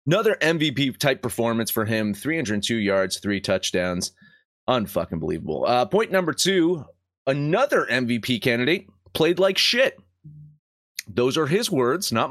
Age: 30-49